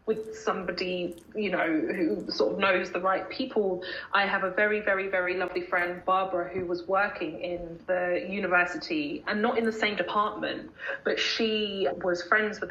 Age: 20-39